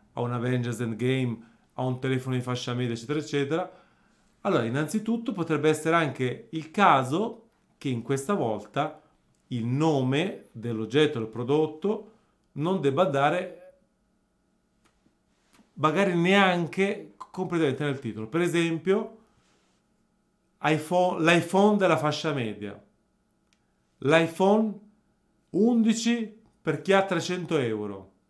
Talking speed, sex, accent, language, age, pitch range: 105 wpm, male, native, Italian, 40-59, 125-185 Hz